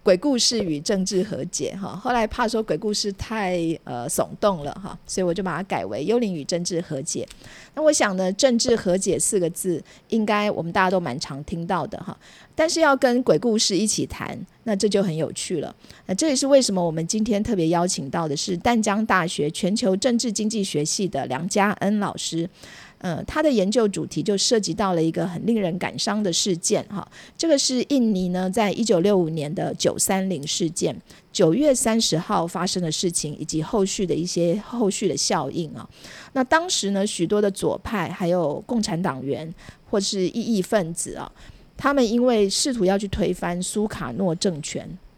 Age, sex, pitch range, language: 50-69, female, 175-220 Hz, Chinese